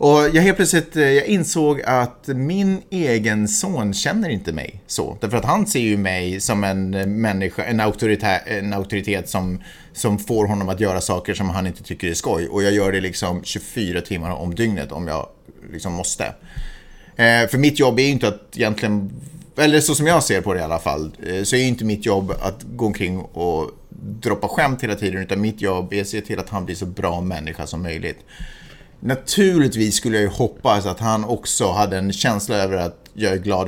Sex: male